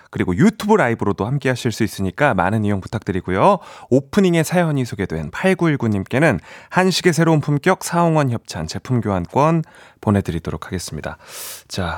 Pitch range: 100-160 Hz